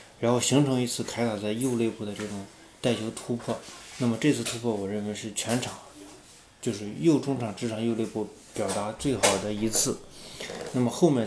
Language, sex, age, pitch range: Chinese, male, 20-39, 105-130 Hz